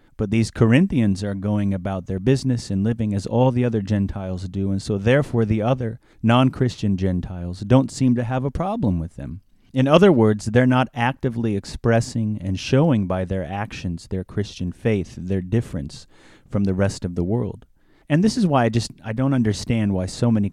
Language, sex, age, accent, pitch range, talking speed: English, male, 30-49, American, 95-125 Hz, 195 wpm